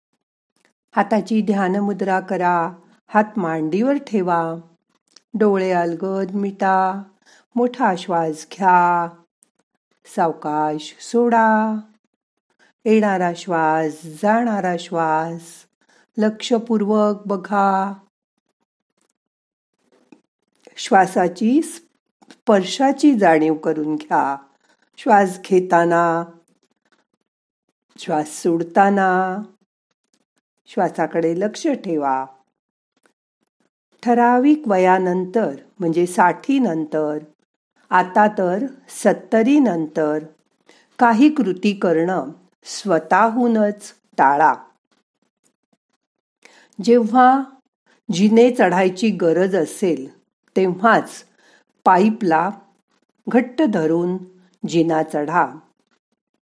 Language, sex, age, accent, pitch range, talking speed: Marathi, female, 50-69, native, 170-225 Hz, 60 wpm